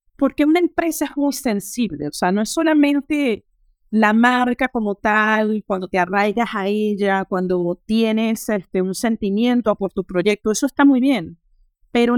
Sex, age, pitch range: female, 30-49, 195-240 Hz